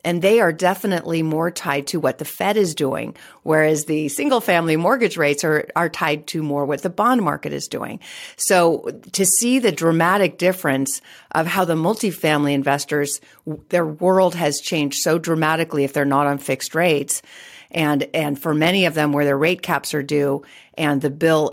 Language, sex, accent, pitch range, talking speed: English, female, American, 145-175 Hz, 185 wpm